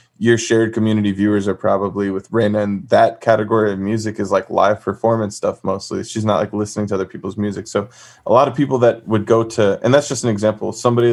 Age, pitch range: 20-39, 105-120 Hz